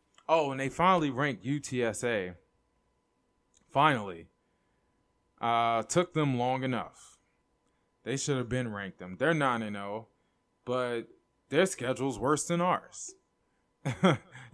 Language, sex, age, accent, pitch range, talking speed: English, male, 20-39, American, 115-145 Hz, 105 wpm